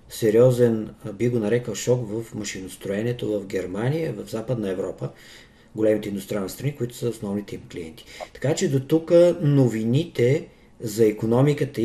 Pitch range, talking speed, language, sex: 110-135 Hz, 135 wpm, Bulgarian, male